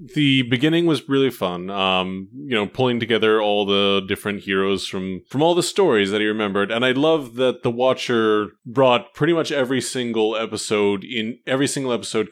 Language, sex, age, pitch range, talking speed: English, male, 30-49, 105-150 Hz, 185 wpm